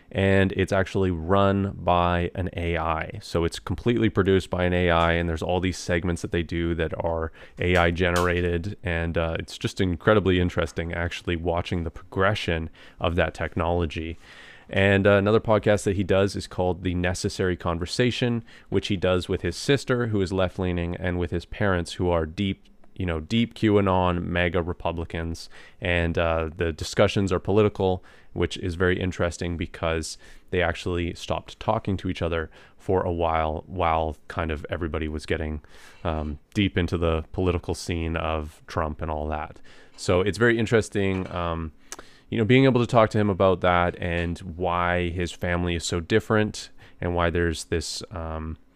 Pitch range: 85-95 Hz